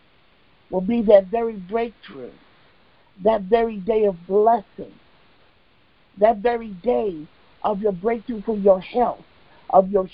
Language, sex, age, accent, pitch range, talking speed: English, male, 50-69, American, 210-250 Hz, 125 wpm